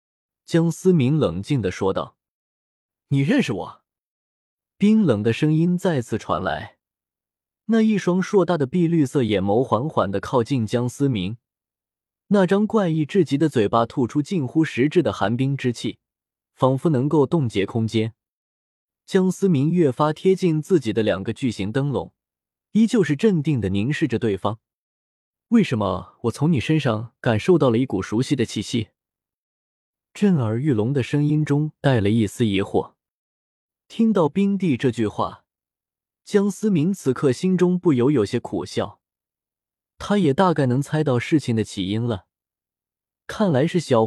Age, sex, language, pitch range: 20-39, male, Chinese, 110-170 Hz